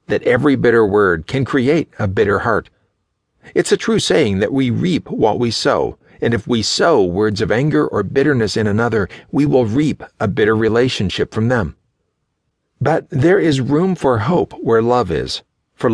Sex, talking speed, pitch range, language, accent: male, 180 wpm, 110-150 Hz, English, American